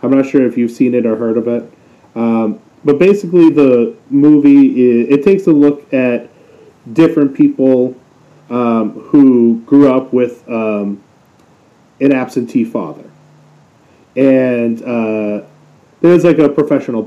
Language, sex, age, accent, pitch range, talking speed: English, male, 30-49, American, 115-140 Hz, 135 wpm